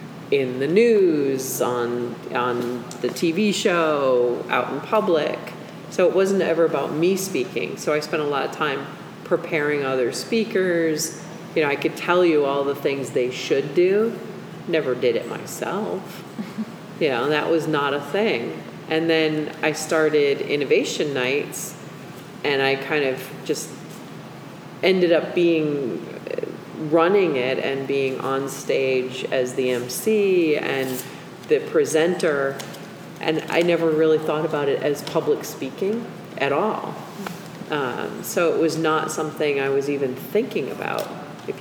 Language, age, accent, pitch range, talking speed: English, 30-49, American, 135-180 Hz, 145 wpm